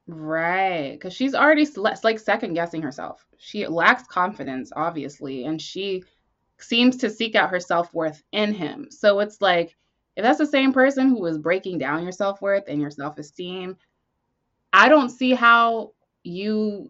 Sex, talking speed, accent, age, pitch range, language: female, 155 wpm, American, 20-39, 160-225 Hz, English